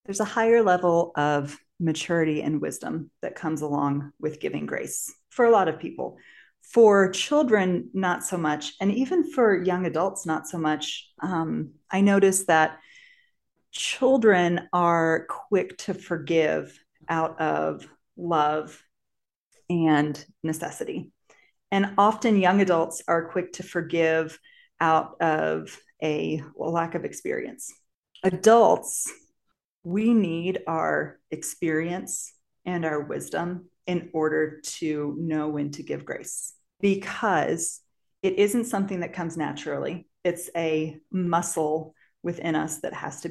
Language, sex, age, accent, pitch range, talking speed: English, female, 40-59, American, 160-190 Hz, 125 wpm